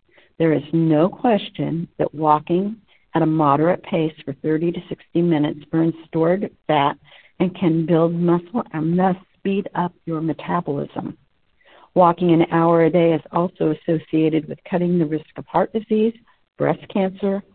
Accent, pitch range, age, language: American, 155-185 Hz, 60-79, English